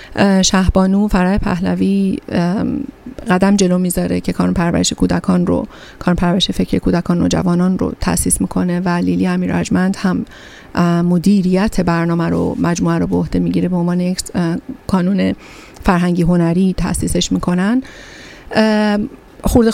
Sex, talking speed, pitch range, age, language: female, 120 wpm, 175-205 Hz, 40-59, Persian